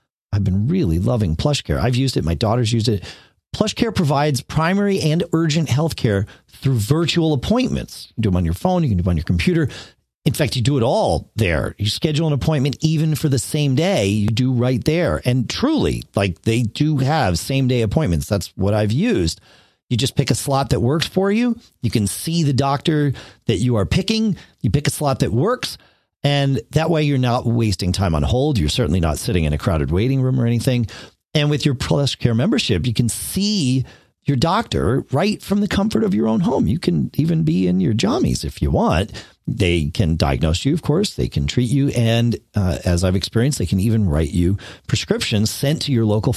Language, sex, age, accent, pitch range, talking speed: English, male, 40-59, American, 95-150 Hz, 215 wpm